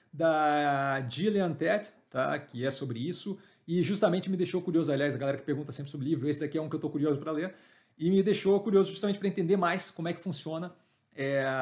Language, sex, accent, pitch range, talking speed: Portuguese, male, Brazilian, 145-180 Hz, 220 wpm